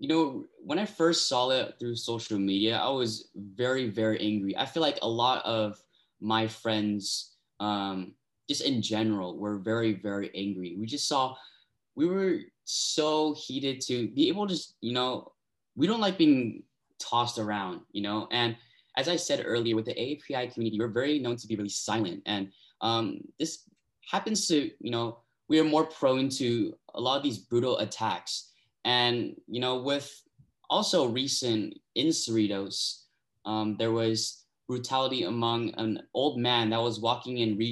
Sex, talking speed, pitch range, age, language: male, 170 wpm, 110-130 Hz, 10-29, English